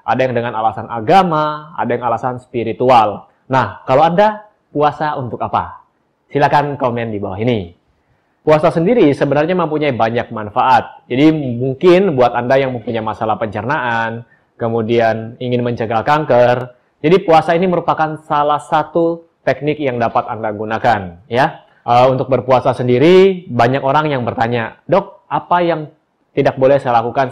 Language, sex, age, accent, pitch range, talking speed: Indonesian, male, 20-39, native, 115-150 Hz, 140 wpm